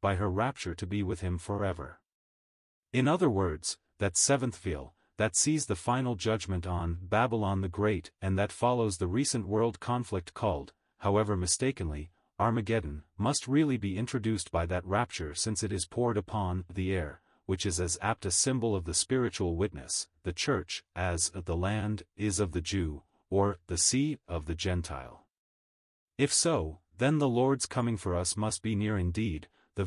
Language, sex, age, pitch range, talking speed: English, male, 40-59, 90-115 Hz, 175 wpm